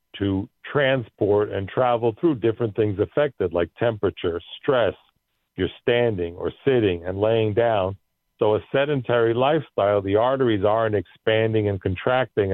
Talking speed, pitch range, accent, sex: 135 wpm, 95-110 Hz, American, male